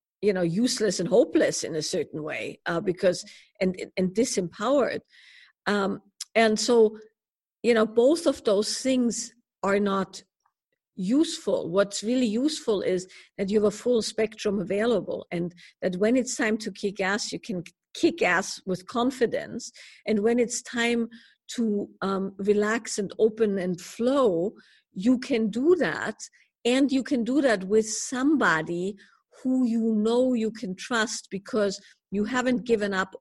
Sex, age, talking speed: female, 50-69, 150 wpm